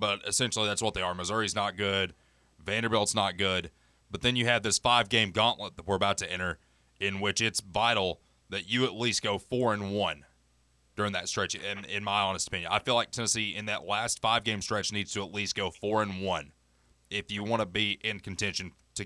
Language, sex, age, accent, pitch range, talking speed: English, male, 30-49, American, 85-115 Hz, 210 wpm